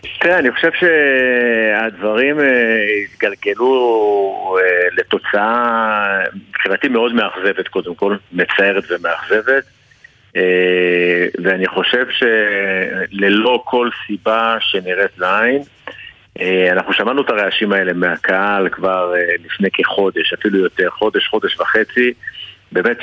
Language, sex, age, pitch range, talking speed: Hebrew, male, 50-69, 95-120 Hz, 90 wpm